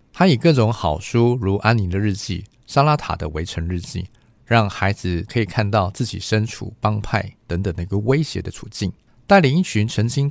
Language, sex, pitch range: Chinese, male, 95-125 Hz